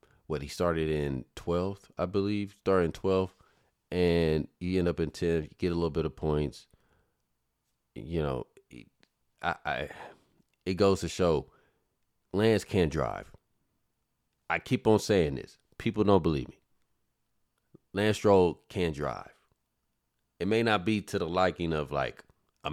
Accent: American